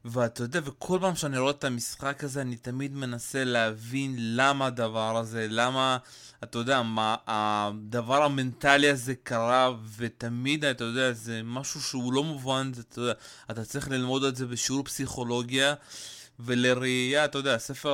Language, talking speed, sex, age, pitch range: Hebrew, 150 wpm, male, 20-39, 115-135 Hz